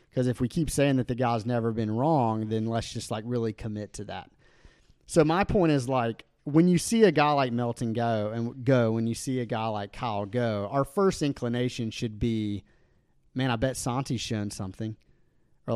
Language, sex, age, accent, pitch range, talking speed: English, male, 30-49, American, 110-130 Hz, 205 wpm